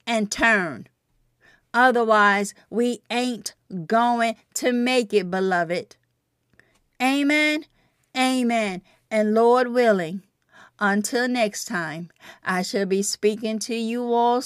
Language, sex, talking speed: English, female, 105 wpm